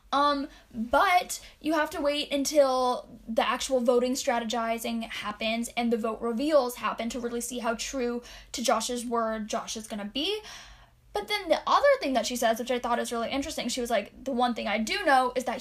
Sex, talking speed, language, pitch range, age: female, 210 wpm, English, 235-290 Hz, 10-29